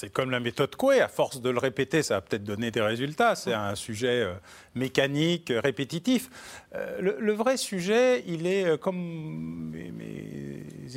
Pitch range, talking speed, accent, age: 130-175 Hz, 180 wpm, French, 40-59